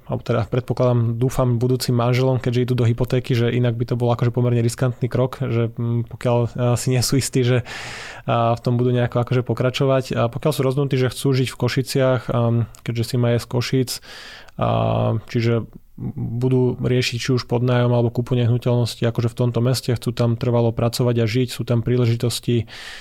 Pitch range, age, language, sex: 120-125 Hz, 20-39, Slovak, male